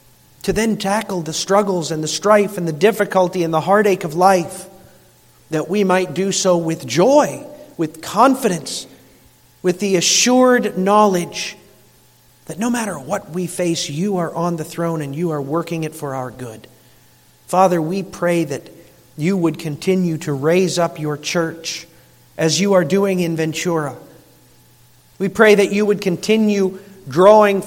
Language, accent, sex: English, American, male